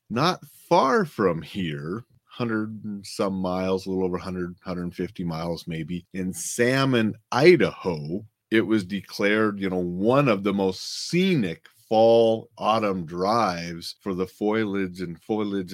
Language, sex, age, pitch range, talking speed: English, male, 30-49, 85-110 Hz, 135 wpm